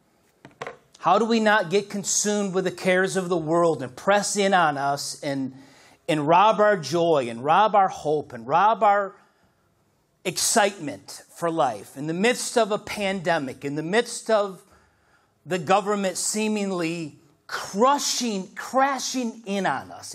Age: 40-59